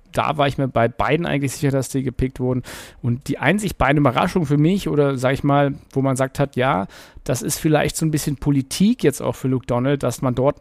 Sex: male